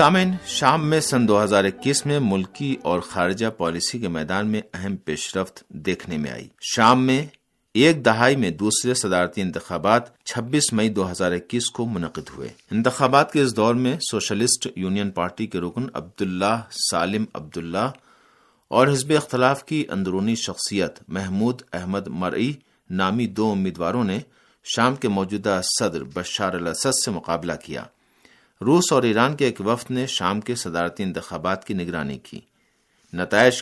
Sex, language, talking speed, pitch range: male, Urdu, 150 wpm, 95-130 Hz